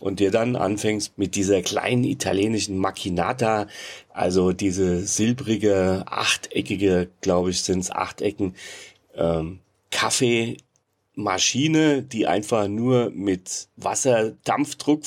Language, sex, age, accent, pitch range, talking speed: German, male, 40-59, German, 95-115 Hz, 105 wpm